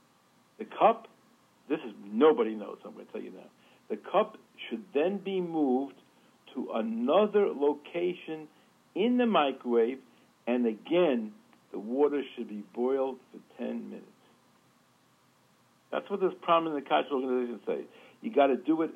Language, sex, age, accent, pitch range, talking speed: English, male, 60-79, American, 130-205 Hz, 140 wpm